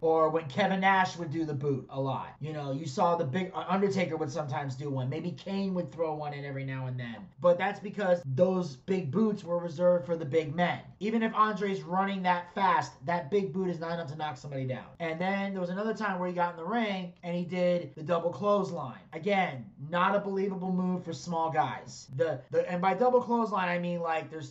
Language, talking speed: English, 235 wpm